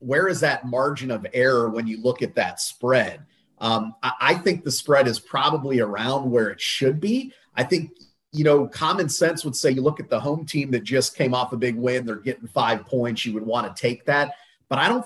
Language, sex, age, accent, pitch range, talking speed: English, male, 30-49, American, 120-145 Hz, 235 wpm